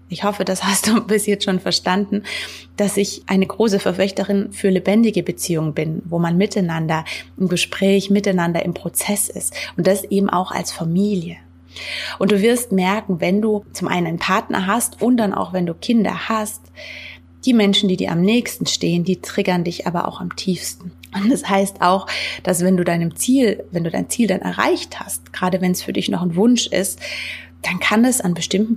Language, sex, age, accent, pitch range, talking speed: German, female, 30-49, German, 180-210 Hz, 200 wpm